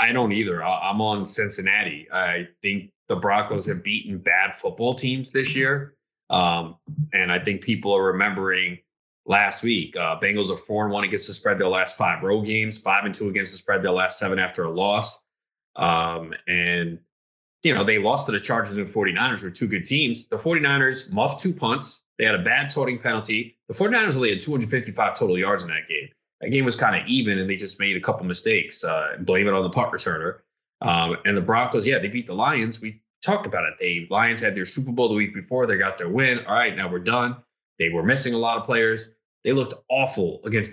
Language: English